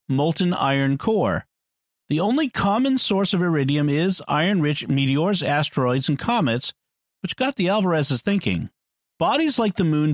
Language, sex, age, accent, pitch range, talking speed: English, male, 50-69, American, 140-195 Hz, 140 wpm